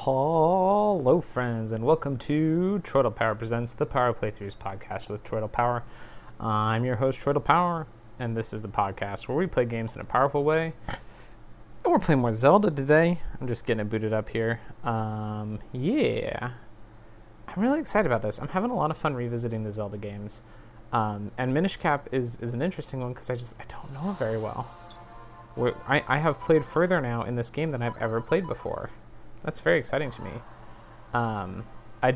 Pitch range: 115-150 Hz